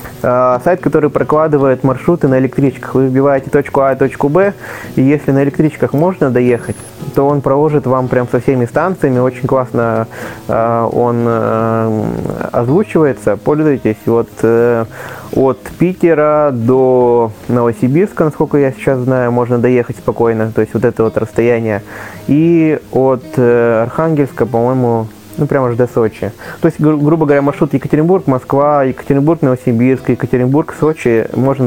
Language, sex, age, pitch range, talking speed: Russian, male, 20-39, 115-140 Hz, 135 wpm